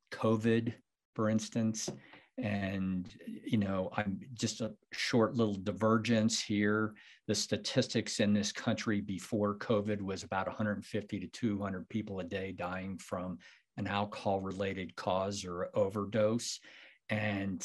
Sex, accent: male, American